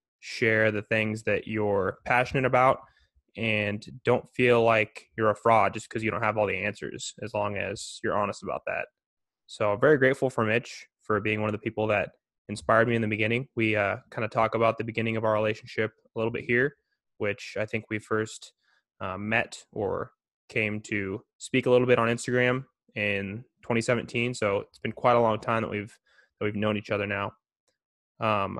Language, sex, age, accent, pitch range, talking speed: English, male, 20-39, American, 105-115 Hz, 195 wpm